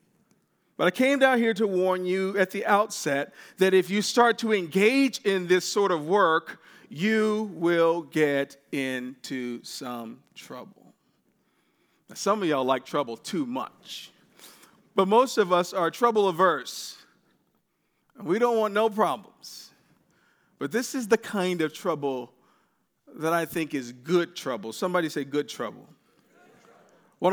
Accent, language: American, English